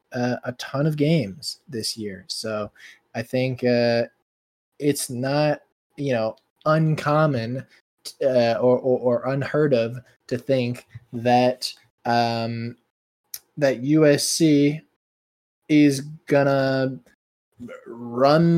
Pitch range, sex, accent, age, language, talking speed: 125-165 Hz, male, American, 20-39, English, 100 wpm